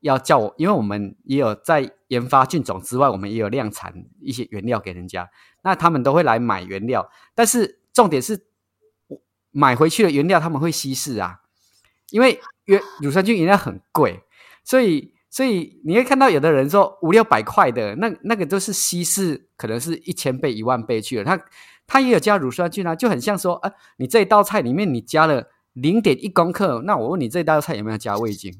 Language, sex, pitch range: Chinese, male, 125-195 Hz